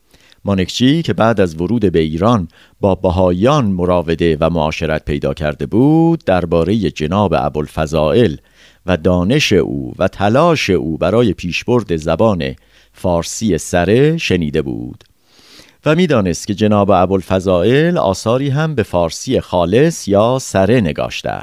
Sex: male